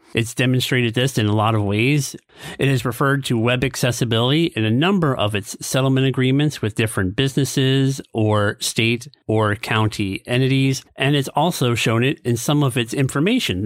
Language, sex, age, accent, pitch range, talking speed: English, male, 40-59, American, 110-135 Hz, 170 wpm